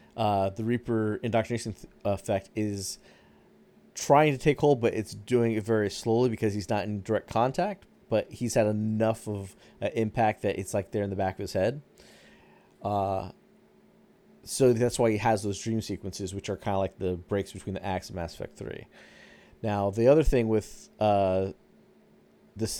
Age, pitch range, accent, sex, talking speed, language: 30-49, 100-115 Hz, American, male, 185 wpm, English